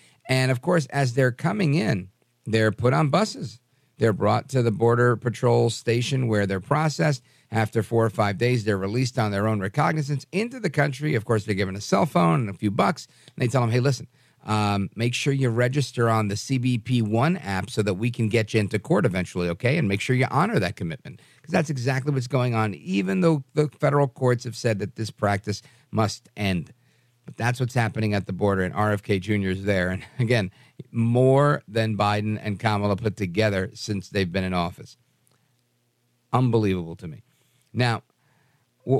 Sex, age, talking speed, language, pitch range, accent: male, 50-69, 195 wpm, English, 105-135 Hz, American